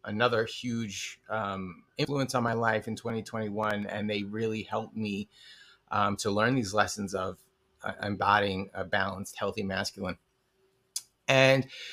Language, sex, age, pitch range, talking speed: English, male, 30-49, 110-135 Hz, 135 wpm